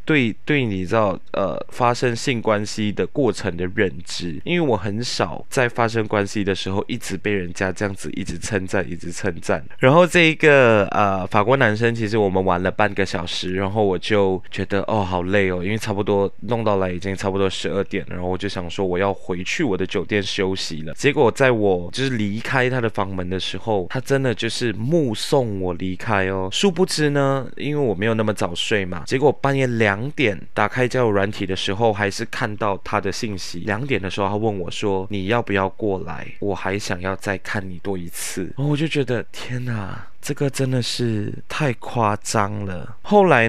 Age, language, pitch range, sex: 20-39, Chinese, 95-120 Hz, male